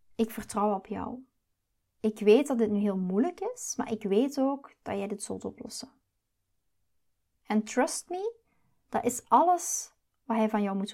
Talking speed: 175 wpm